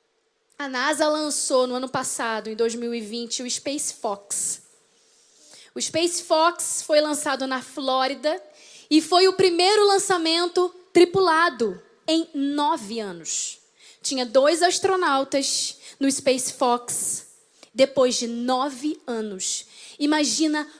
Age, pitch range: 10-29, 275-380 Hz